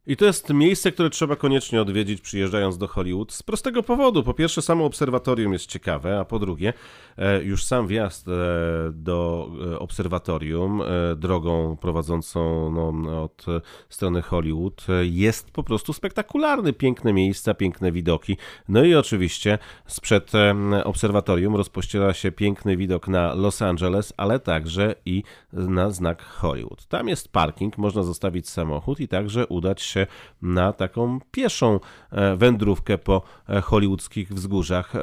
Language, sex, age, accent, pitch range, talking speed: Polish, male, 40-59, native, 90-115 Hz, 130 wpm